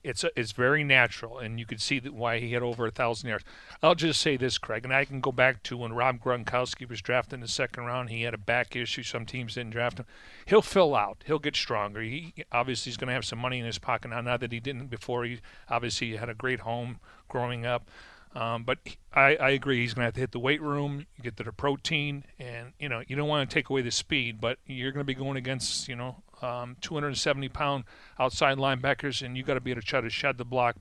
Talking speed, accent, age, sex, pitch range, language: 255 wpm, American, 40-59, male, 120-140 Hz, English